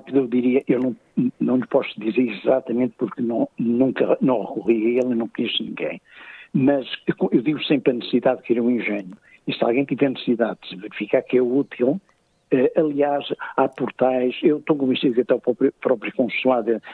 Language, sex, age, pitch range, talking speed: Portuguese, male, 60-79, 120-145 Hz, 175 wpm